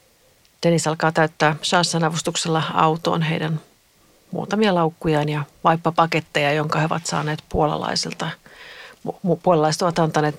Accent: native